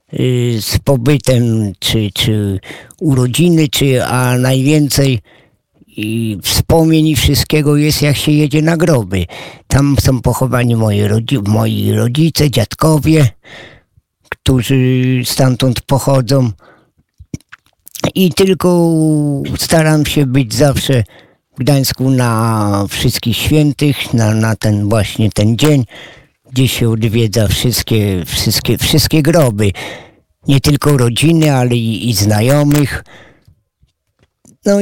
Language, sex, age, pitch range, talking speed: Polish, male, 50-69, 115-150 Hz, 105 wpm